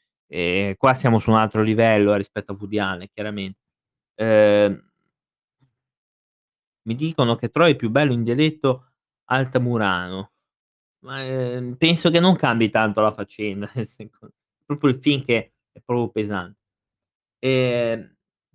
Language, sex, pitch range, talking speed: Italian, male, 110-145 Hz, 125 wpm